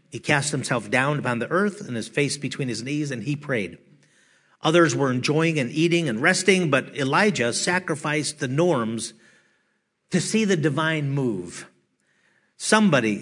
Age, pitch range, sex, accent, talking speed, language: 50-69, 135-170 Hz, male, American, 155 wpm, English